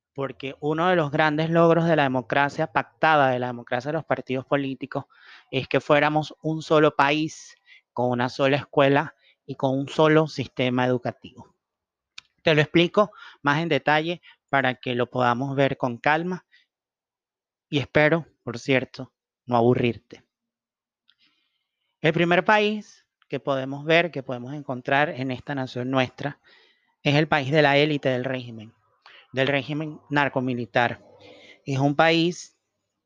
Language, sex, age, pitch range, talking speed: Spanish, male, 30-49, 130-155 Hz, 145 wpm